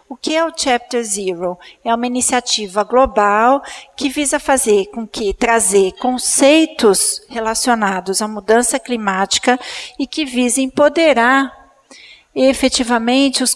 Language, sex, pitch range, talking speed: Portuguese, female, 220-265 Hz, 120 wpm